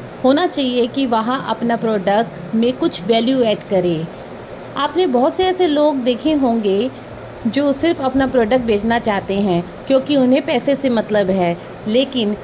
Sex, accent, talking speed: female, native, 155 wpm